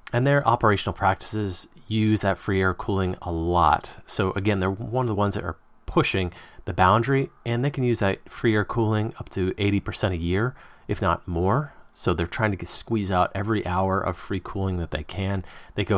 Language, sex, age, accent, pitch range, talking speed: English, male, 30-49, American, 90-115 Hz, 205 wpm